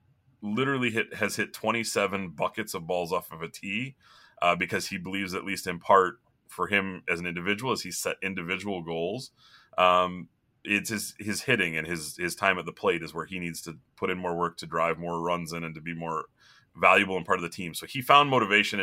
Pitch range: 85-105 Hz